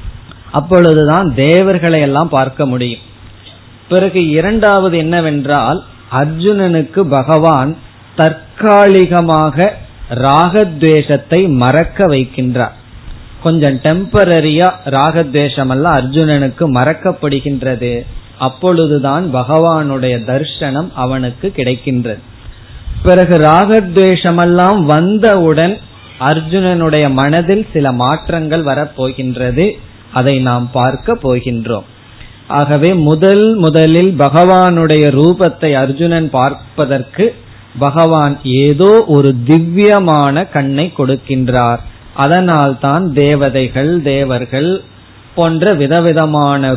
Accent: native